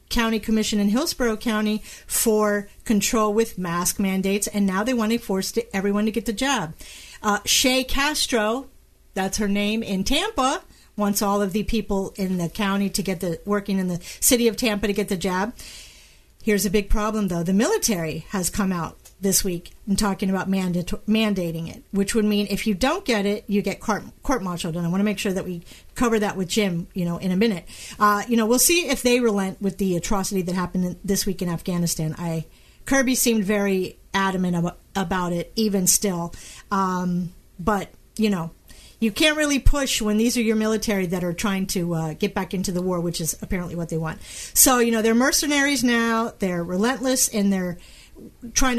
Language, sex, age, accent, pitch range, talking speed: English, female, 40-59, American, 185-225 Hz, 205 wpm